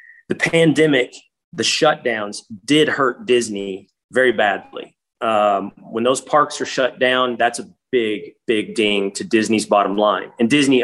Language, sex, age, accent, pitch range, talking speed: English, male, 30-49, American, 115-155 Hz, 150 wpm